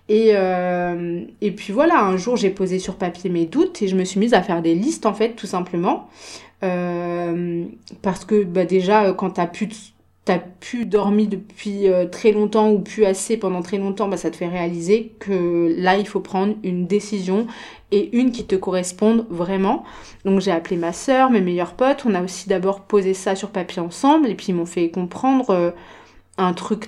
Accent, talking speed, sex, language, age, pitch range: French, 205 wpm, female, French, 20-39, 185-220 Hz